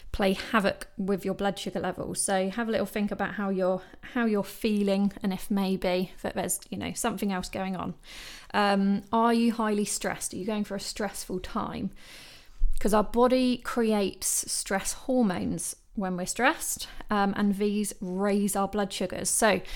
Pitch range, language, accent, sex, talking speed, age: 190-230 Hz, English, British, female, 175 wpm, 20-39